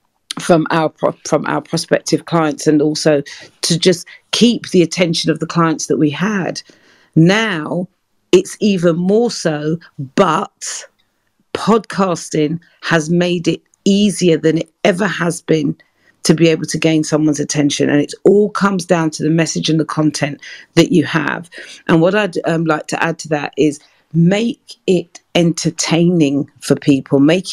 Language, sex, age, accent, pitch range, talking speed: English, female, 40-59, British, 155-180 Hz, 155 wpm